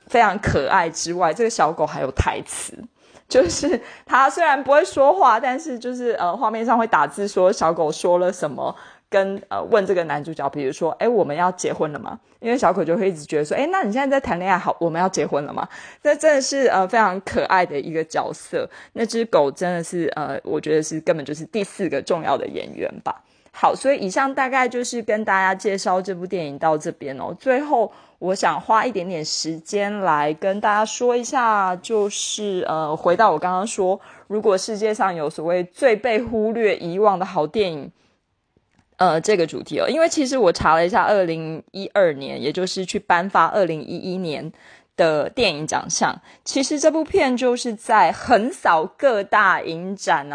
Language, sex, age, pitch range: Chinese, female, 20-39, 170-235 Hz